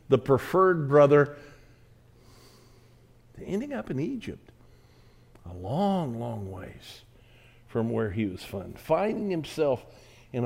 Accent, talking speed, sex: American, 110 wpm, male